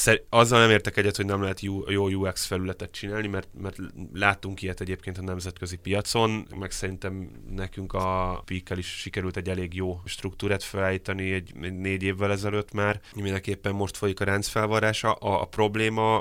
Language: Hungarian